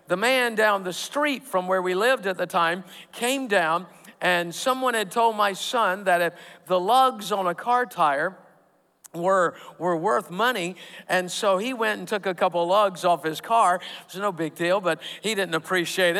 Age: 50-69